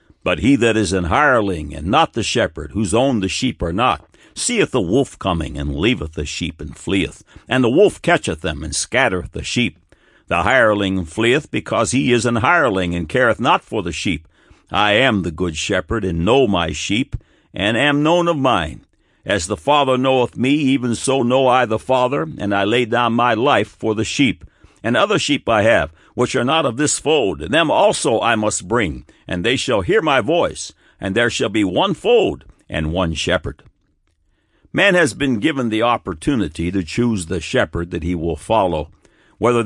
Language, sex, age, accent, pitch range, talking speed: English, male, 60-79, American, 90-125 Hz, 195 wpm